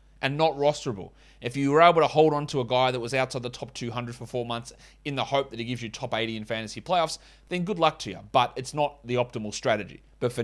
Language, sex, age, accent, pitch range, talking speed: English, male, 30-49, Australian, 125-155 Hz, 270 wpm